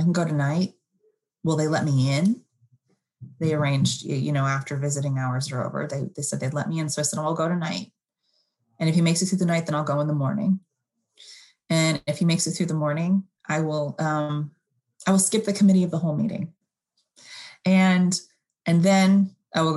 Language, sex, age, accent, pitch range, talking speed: English, female, 30-49, American, 145-190 Hz, 215 wpm